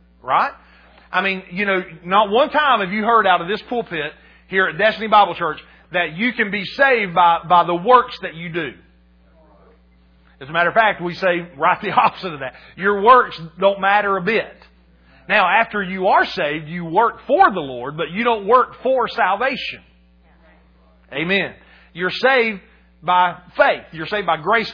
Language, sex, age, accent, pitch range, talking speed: English, male, 40-59, American, 170-235 Hz, 180 wpm